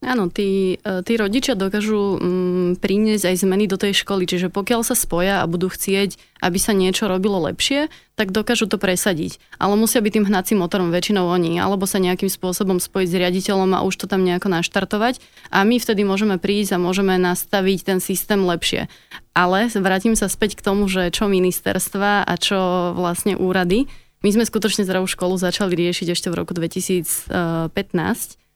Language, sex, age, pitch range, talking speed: Slovak, female, 20-39, 180-205 Hz, 175 wpm